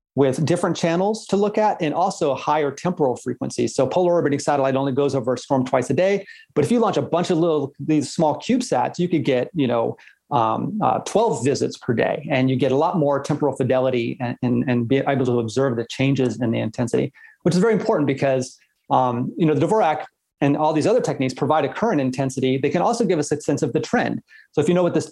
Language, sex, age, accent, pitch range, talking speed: English, male, 30-49, American, 130-160 Hz, 240 wpm